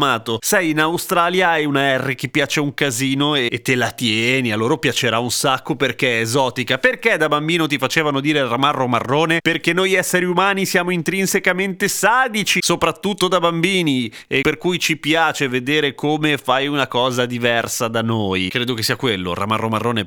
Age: 30-49